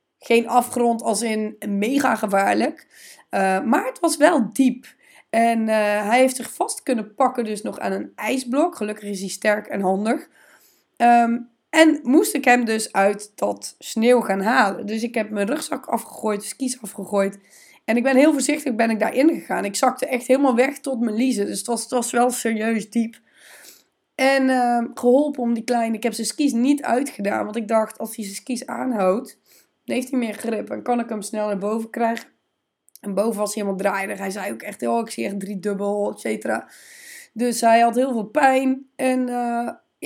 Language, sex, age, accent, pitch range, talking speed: Dutch, female, 20-39, Dutch, 210-260 Hz, 200 wpm